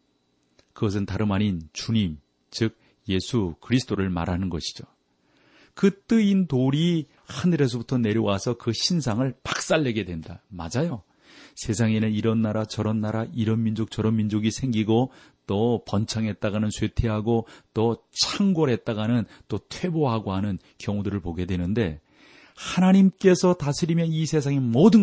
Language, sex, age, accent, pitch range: Korean, male, 40-59, native, 95-130 Hz